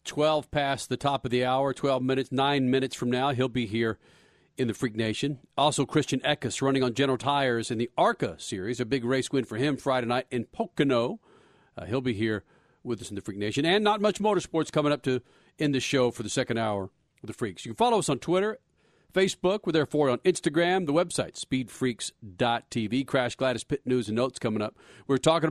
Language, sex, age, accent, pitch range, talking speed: English, male, 40-59, American, 120-150 Hz, 215 wpm